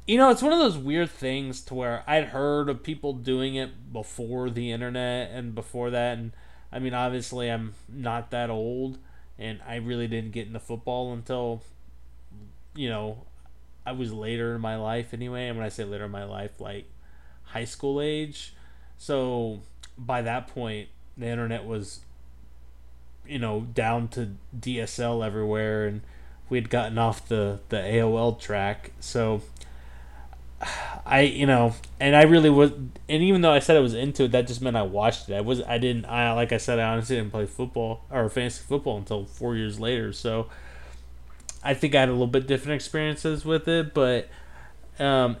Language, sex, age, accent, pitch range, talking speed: English, male, 20-39, American, 105-135 Hz, 180 wpm